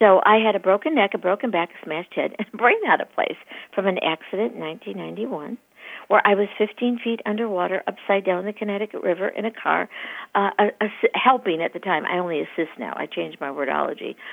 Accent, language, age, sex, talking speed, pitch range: American, English, 60-79, female, 215 wpm, 185-245 Hz